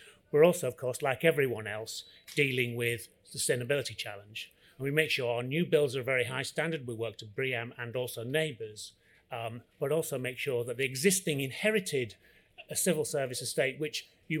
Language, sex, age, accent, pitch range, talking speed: English, male, 30-49, British, 115-150 Hz, 185 wpm